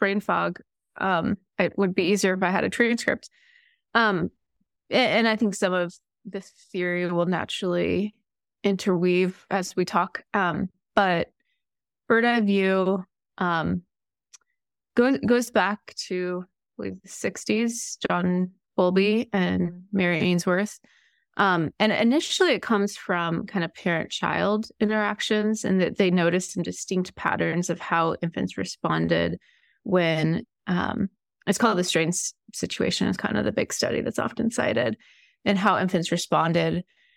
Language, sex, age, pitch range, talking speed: English, female, 20-39, 175-215 Hz, 135 wpm